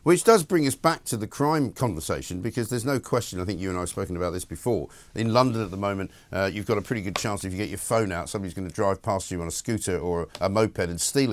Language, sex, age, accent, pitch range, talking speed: English, male, 50-69, British, 95-130 Hz, 295 wpm